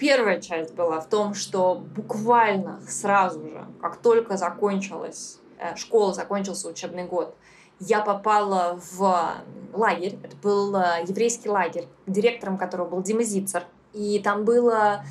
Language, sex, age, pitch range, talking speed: Russian, female, 20-39, 180-225 Hz, 125 wpm